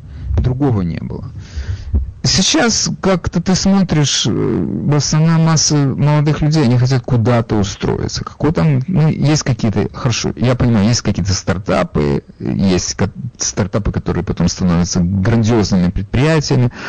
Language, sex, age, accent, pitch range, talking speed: Russian, male, 40-59, native, 100-145 Hz, 115 wpm